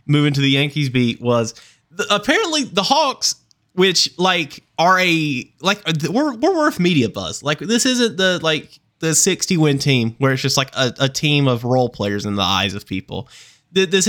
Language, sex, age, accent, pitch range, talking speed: English, male, 20-39, American, 115-165 Hz, 185 wpm